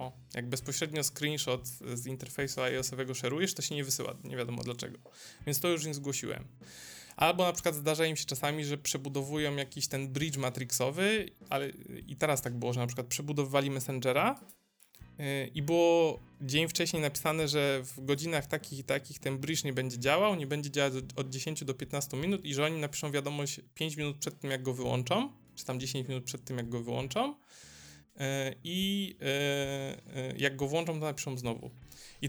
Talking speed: 175 wpm